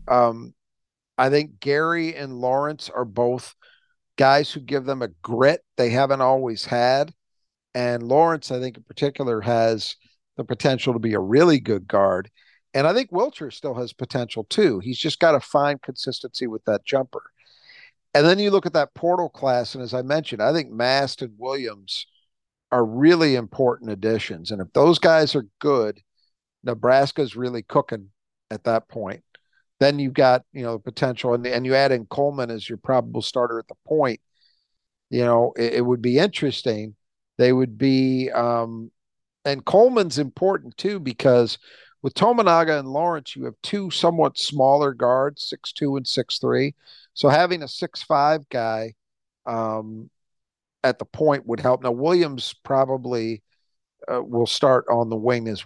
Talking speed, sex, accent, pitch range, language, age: 170 wpm, male, American, 115-145 Hz, English, 50-69